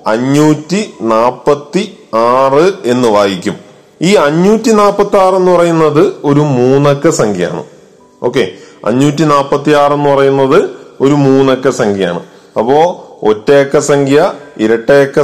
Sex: male